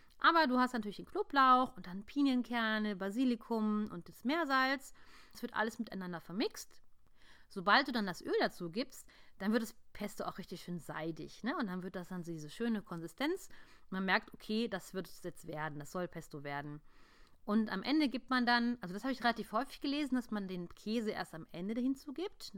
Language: German